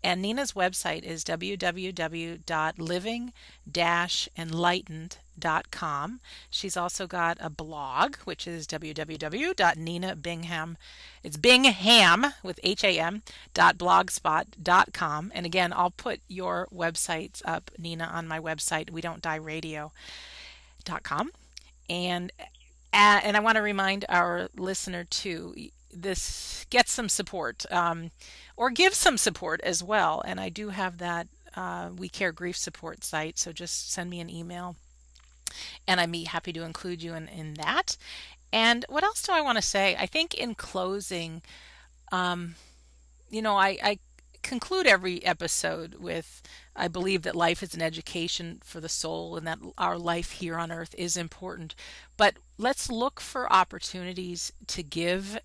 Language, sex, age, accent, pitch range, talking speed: English, female, 40-59, American, 160-200 Hz, 135 wpm